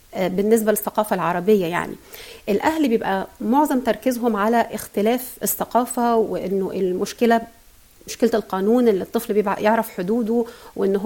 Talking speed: 110 wpm